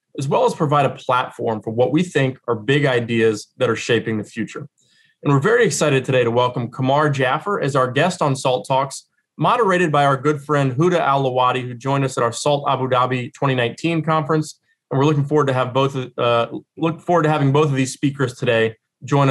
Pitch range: 125-155 Hz